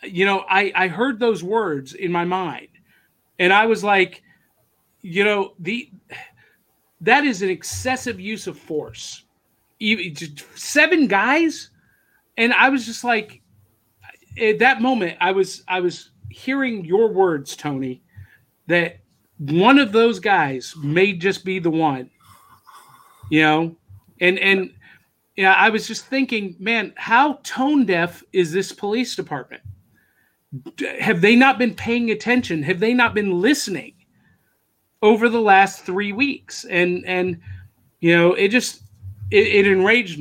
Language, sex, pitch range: English, male, 155-215 Hz